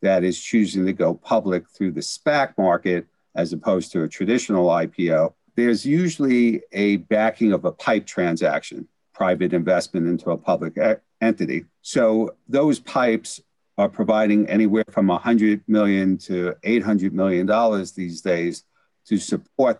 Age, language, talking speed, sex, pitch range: 50-69, English, 145 wpm, male, 95-110 Hz